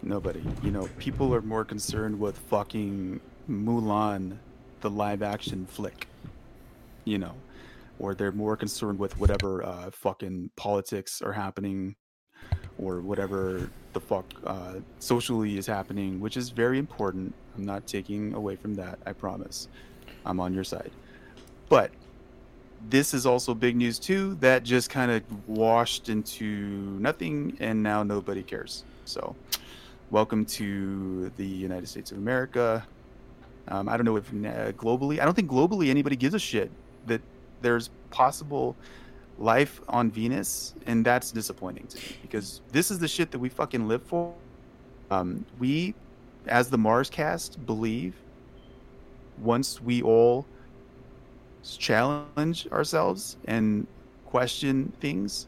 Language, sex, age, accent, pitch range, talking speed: English, male, 30-49, American, 100-130 Hz, 135 wpm